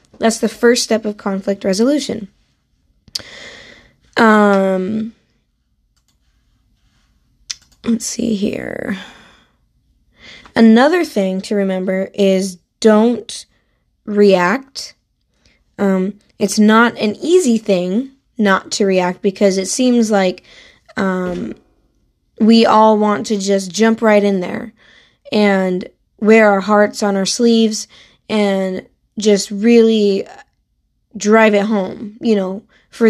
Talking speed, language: 105 wpm, English